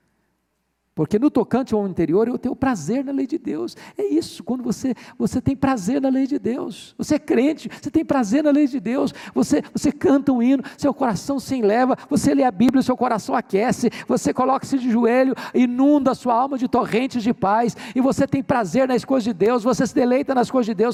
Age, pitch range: 50-69, 180-265 Hz